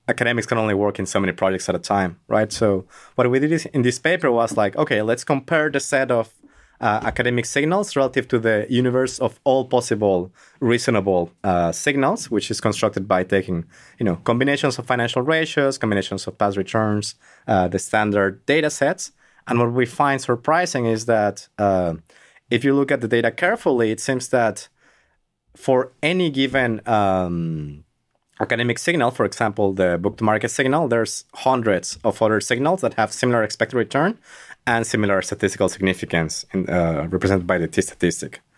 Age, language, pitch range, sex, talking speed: 30-49, English, 105-135 Hz, male, 170 wpm